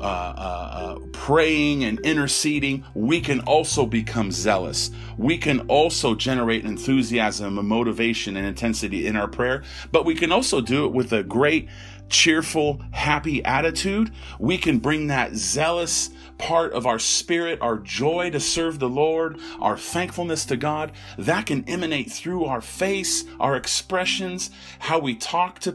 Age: 40-59